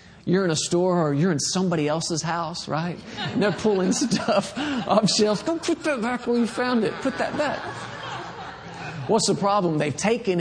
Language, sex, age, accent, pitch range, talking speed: English, male, 40-59, American, 155-210 Hz, 190 wpm